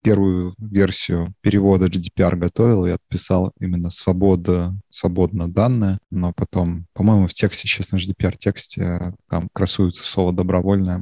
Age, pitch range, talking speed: 20-39, 90-110 Hz, 125 wpm